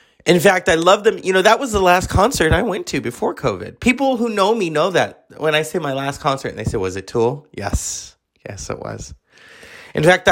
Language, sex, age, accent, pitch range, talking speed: English, male, 30-49, American, 125-185 Hz, 240 wpm